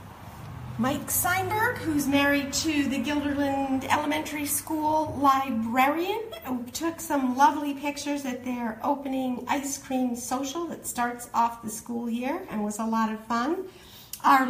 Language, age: English, 50-69